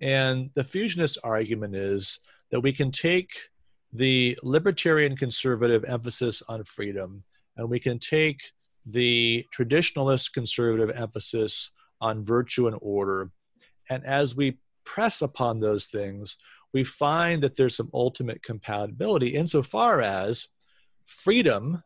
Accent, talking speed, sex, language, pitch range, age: American, 120 wpm, male, English, 110-140 Hz, 40-59